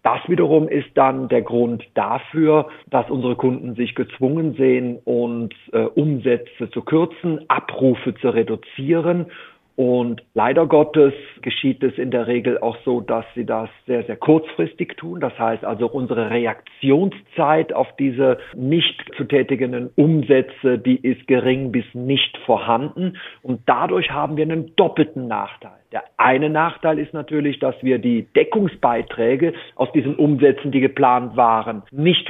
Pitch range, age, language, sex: 125-160 Hz, 50-69, German, male